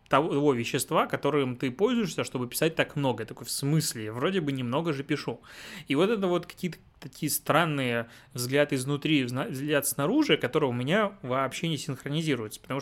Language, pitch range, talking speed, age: Russian, 125-150 Hz, 170 wpm, 20-39